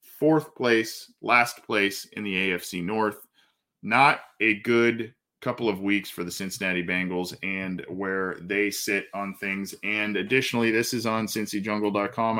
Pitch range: 100-120 Hz